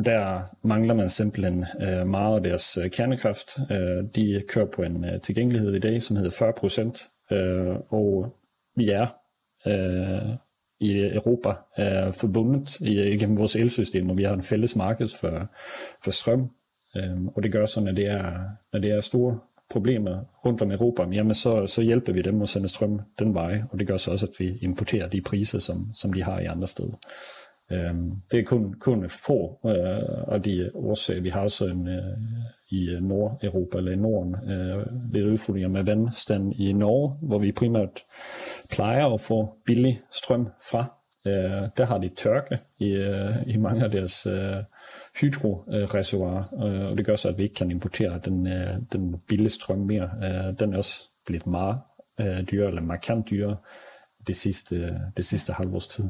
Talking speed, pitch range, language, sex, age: 160 wpm, 95-110 Hz, Danish, male, 30-49